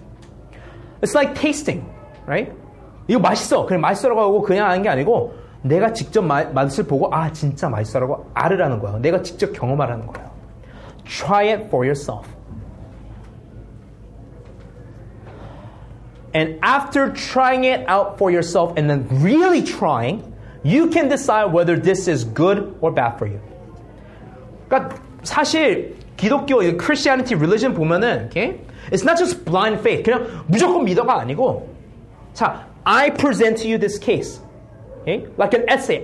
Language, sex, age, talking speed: English, male, 30-49, 130 wpm